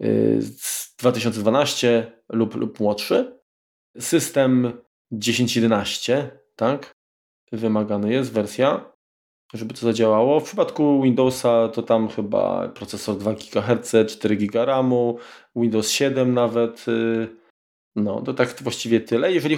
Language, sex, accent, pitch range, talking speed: Polish, male, native, 105-125 Hz, 105 wpm